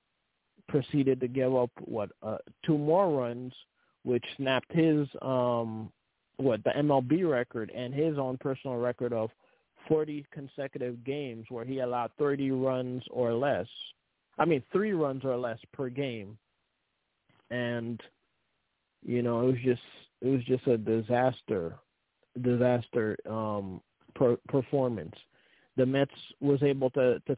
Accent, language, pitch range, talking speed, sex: American, English, 120-140 Hz, 135 wpm, male